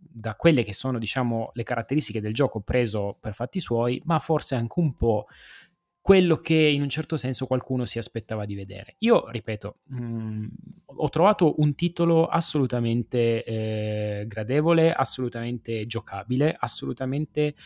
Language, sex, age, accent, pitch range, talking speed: Italian, male, 30-49, native, 115-150 Hz, 140 wpm